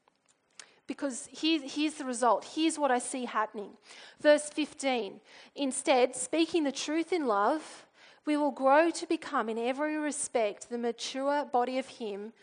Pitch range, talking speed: 235-285 Hz, 145 wpm